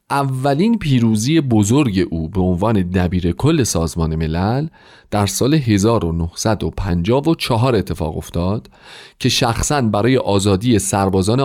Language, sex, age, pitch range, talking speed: Persian, male, 40-59, 95-130 Hz, 100 wpm